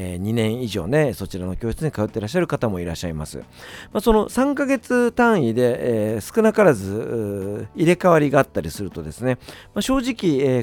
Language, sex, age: Japanese, male, 40-59